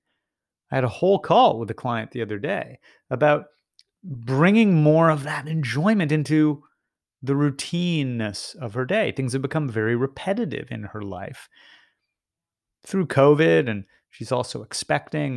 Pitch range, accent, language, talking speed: 125-195 Hz, American, English, 145 wpm